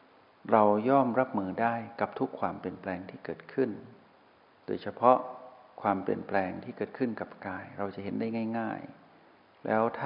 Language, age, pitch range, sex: Thai, 60-79, 95-115 Hz, male